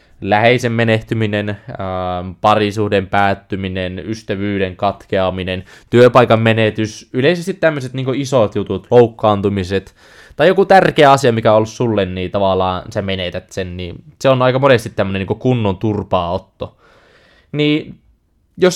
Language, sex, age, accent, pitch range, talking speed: Finnish, male, 20-39, native, 105-140 Hz, 125 wpm